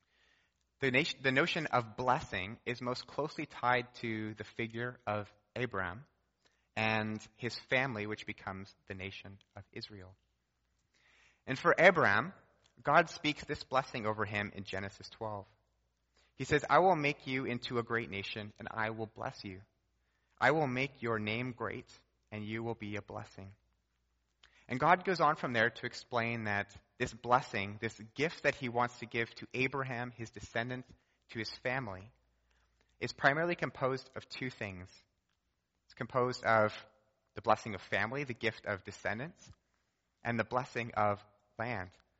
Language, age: English, 30-49